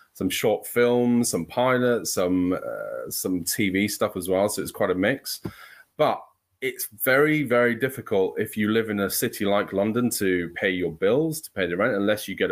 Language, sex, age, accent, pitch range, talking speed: English, male, 30-49, British, 100-125 Hz, 195 wpm